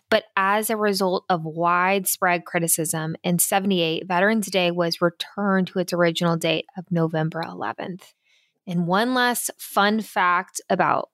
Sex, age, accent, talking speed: female, 20-39, American, 140 wpm